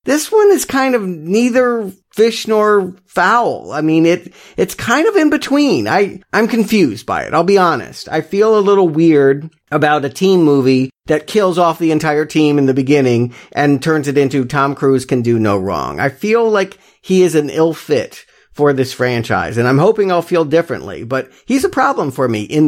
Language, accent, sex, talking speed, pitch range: English, American, male, 205 wpm, 130-190 Hz